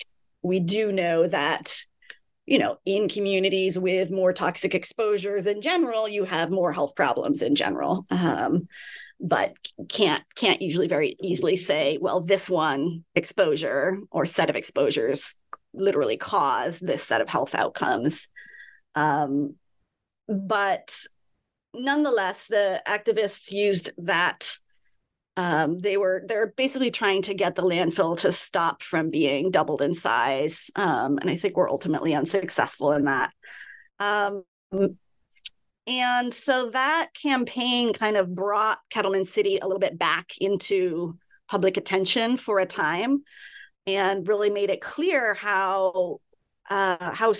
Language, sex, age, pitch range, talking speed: English, female, 30-49, 185-230 Hz, 135 wpm